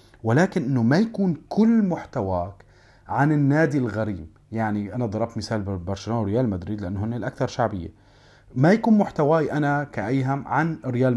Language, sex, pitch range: Arabic, male, 110-145 Hz